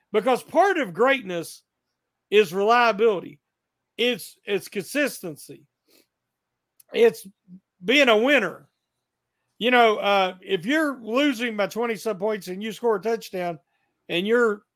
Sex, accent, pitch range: male, American, 195-245 Hz